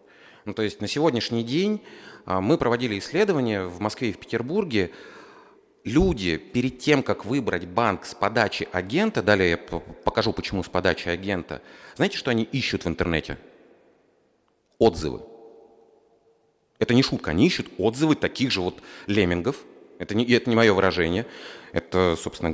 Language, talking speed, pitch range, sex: Russian, 145 wpm, 90-120 Hz, male